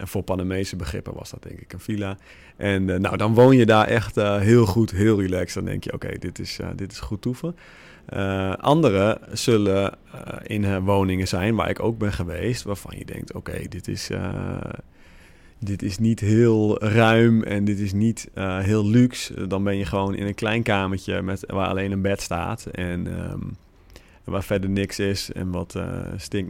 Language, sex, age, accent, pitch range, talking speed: Dutch, male, 30-49, Dutch, 95-115 Hz, 205 wpm